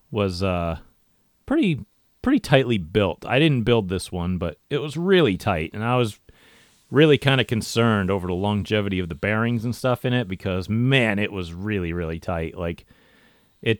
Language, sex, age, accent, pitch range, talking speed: English, male, 30-49, American, 90-115 Hz, 185 wpm